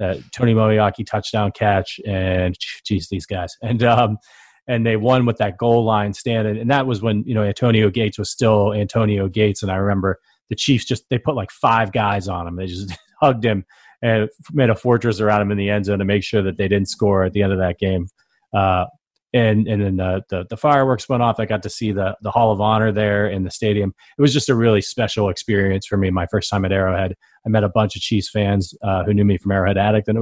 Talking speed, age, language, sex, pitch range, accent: 245 wpm, 30-49, English, male, 100-120 Hz, American